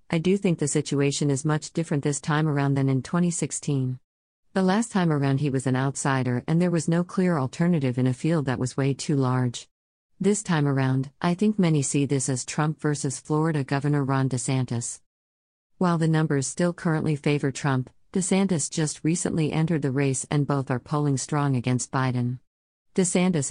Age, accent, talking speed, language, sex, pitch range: 50-69, American, 185 wpm, English, female, 130-165 Hz